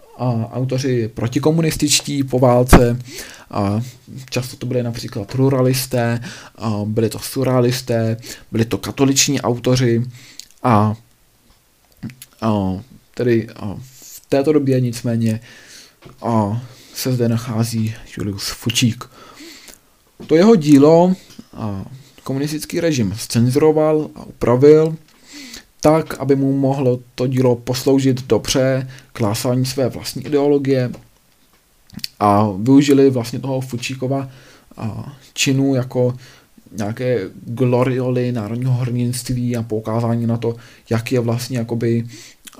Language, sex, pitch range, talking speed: Czech, male, 115-135 Hz, 100 wpm